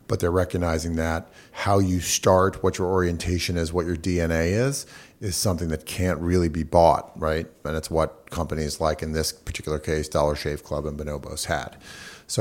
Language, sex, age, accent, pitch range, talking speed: English, male, 40-59, American, 80-95 Hz, 190 wpm